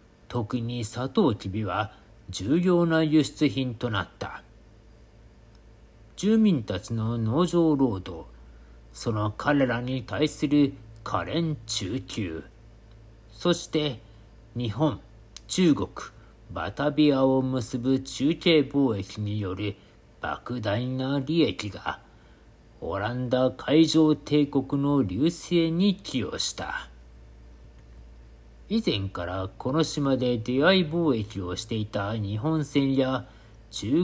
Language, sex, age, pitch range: Japanese, male, 50-69, 110-145 Hz